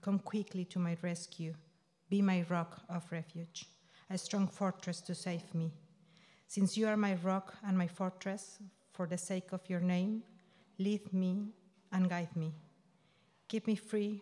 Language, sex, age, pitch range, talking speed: English, female, 40-59, 175-200 Hz, 160 wpm